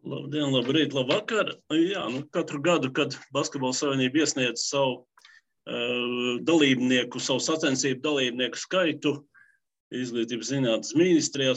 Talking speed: 115 wpm